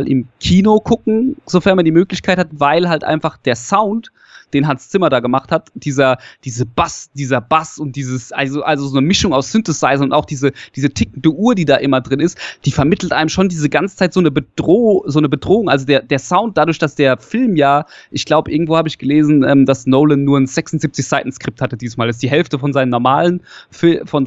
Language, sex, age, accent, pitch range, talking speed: German, male, 20-39, German, 135-175 Hz, 220 wpm